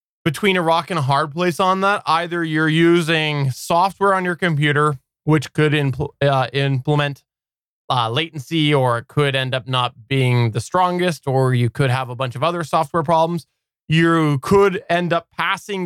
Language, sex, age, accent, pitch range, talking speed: English, male, 20-39, American, 135-160 Hz, 175 wpm